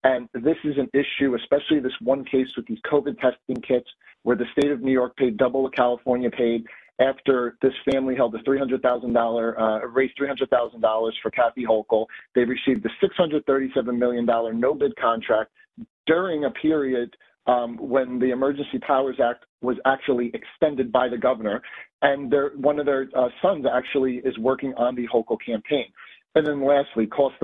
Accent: American